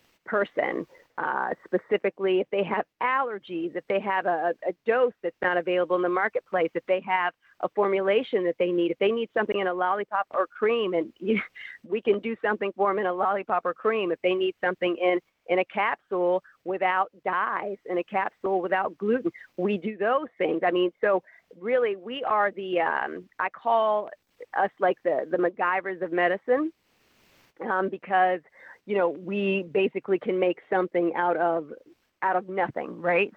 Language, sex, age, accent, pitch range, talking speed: English, female, 40-59, American, 180-205 Hz, 180 wpm